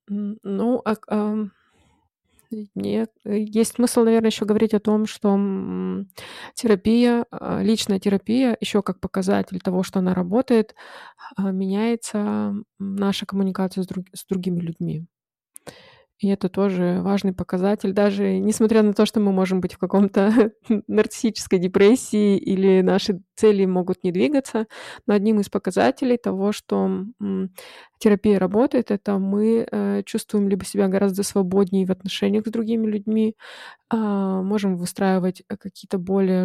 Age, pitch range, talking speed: 20-39, 185-215 Hz, 125 wpm